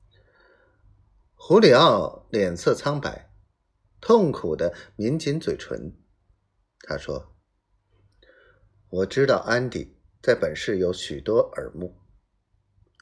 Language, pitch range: Chinese, 95-110 Hz